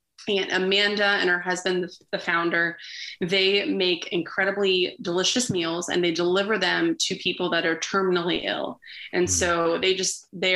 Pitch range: 175-195 Hz